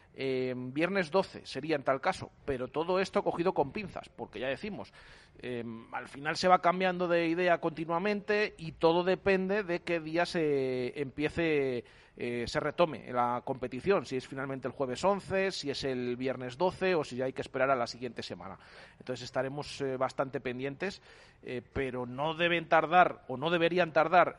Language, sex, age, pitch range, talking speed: Spanish, male, 40-59, 135-180 Hz, 180 wpm